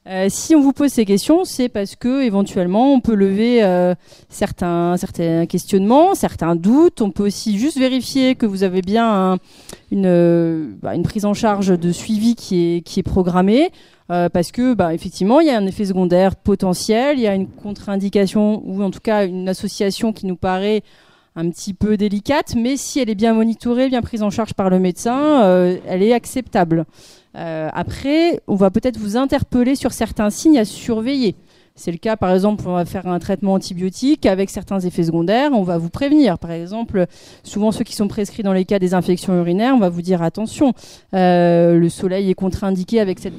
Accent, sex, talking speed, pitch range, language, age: French, female, 205 wpm, 180-230 Hz, French, 30-49